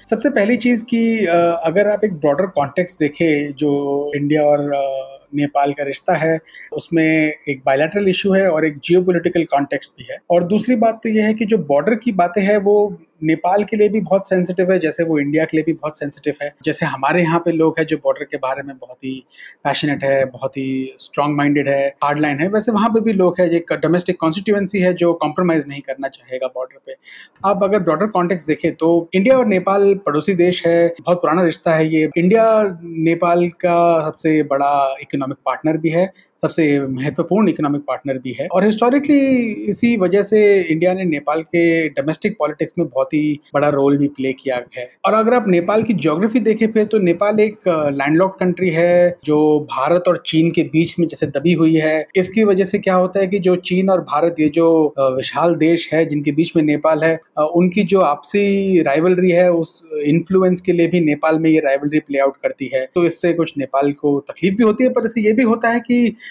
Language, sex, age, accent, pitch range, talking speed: Hindi, male, 30-49, native, 150-190 Hz, 205 wpm